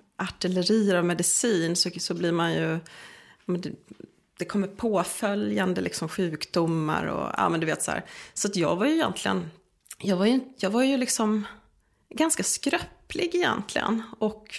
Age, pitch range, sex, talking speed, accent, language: 30-49, 180-235 Hz, female, 150 wpm, Swedish, English